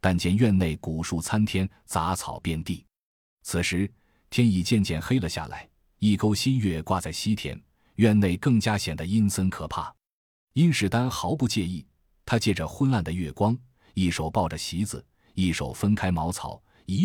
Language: Chinese